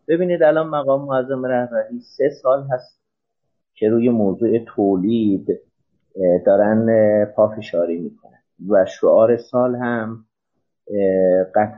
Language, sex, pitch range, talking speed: Persian, male, 105-135 Hz, 95 wpm